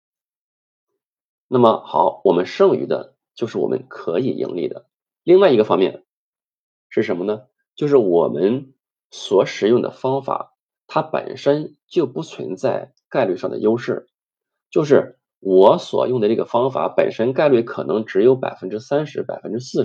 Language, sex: Chinese, male